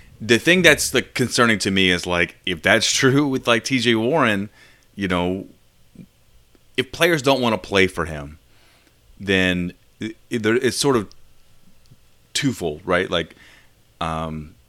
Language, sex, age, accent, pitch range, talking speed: English, male, 30-49, American, 85-110 Hz, 140 wpm